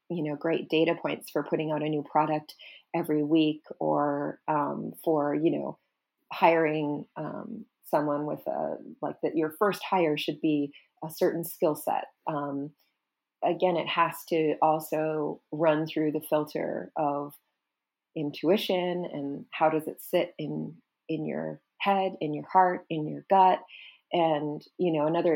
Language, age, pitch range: English, 30-49, 150-165 Hz